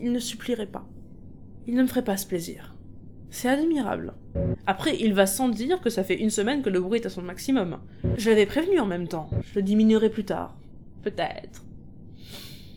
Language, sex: French, female